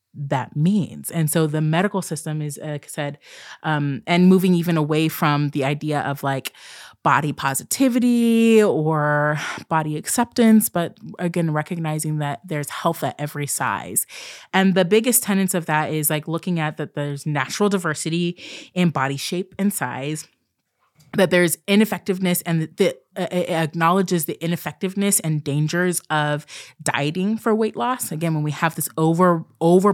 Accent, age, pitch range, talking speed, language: American, 20-39, 150-190 Hz, 155 wpm, English